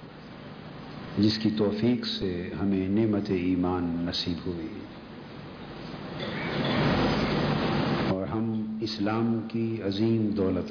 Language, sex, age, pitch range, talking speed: Urdu, male, 50-69, 100-125 Hz, 85 wpm